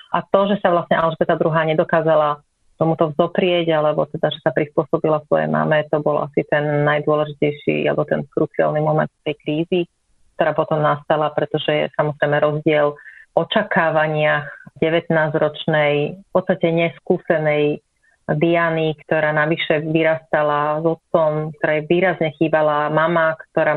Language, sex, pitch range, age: Slovak, female, 150-170 Hz, 30-49